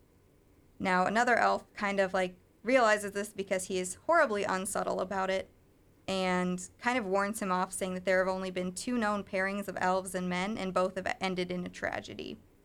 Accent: American